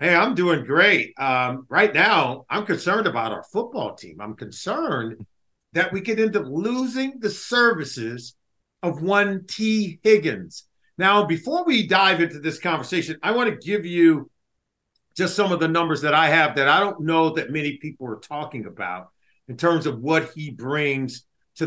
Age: 50-69